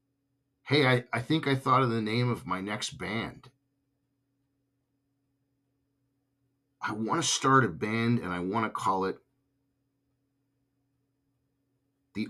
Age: 50-69